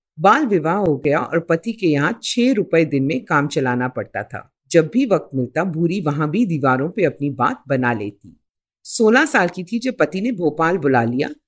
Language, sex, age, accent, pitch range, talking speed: Hindi, female, 50-69, native, 135-220 Hz, 205 wpm